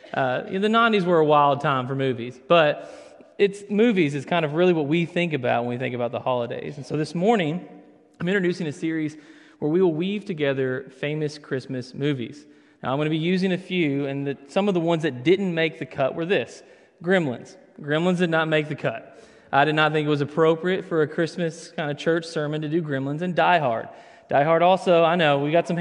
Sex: male